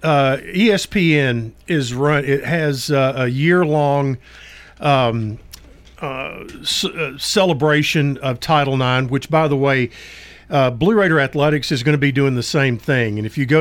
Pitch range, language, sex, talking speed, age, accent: 130-165 Hz, English, male, 165 wpm, 50-69, American